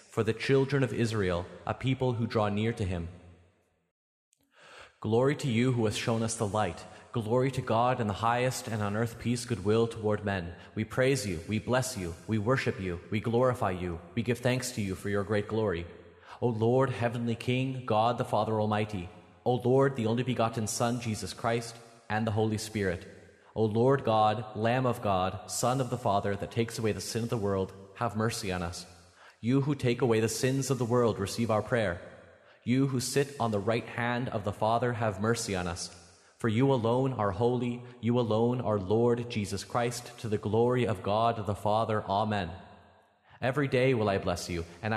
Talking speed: 200 wpm